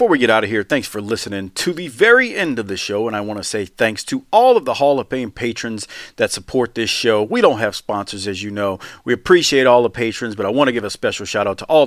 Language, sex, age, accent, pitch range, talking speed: English, male, 40-59, American, 105-155 Hz, 290 wpm